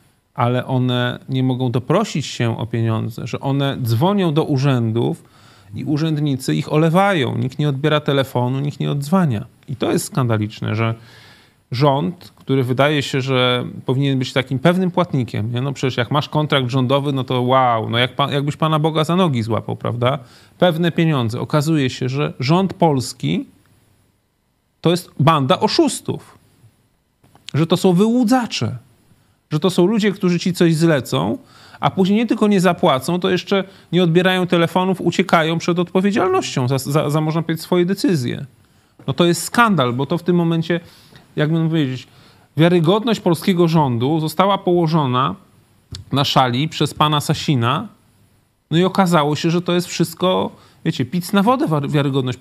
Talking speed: 155 wpm